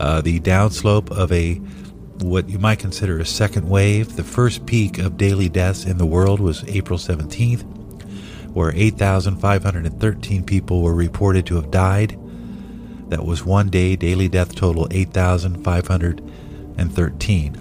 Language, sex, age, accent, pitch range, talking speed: English, male, 50-69, American, 90-105 Hz, 135 wpm